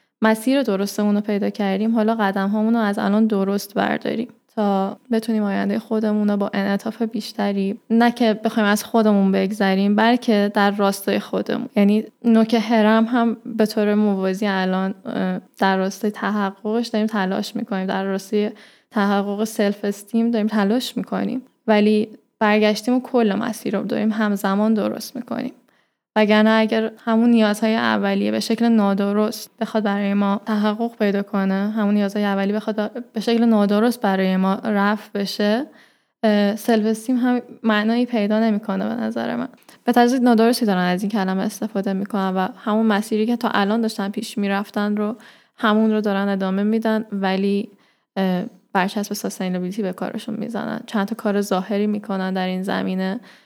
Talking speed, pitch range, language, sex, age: 155 wpm, 200-225 Hz, Persian, female, 10-29